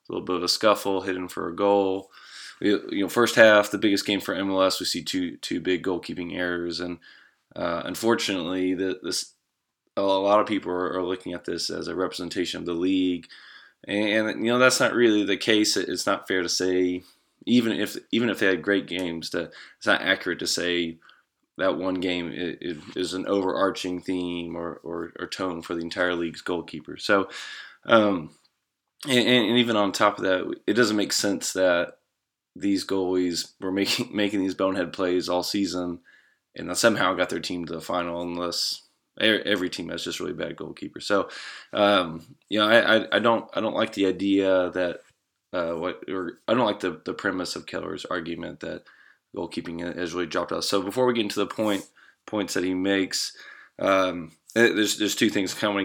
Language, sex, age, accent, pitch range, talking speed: English, male, 20-39, American, 90-100 Hz, 195 wpm